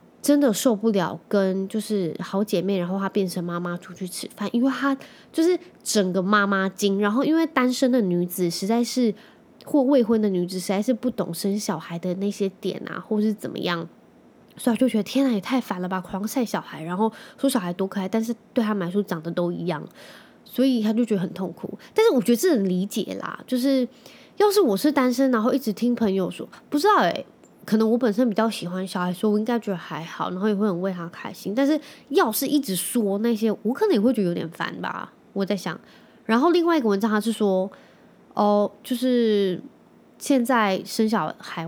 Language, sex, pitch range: Chinese, female, 190-240 Hz